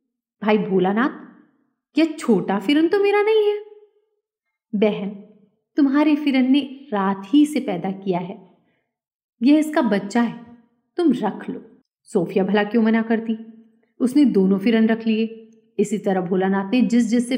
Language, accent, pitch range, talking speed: Hindi, native, 205-265 Hz, 150 wpm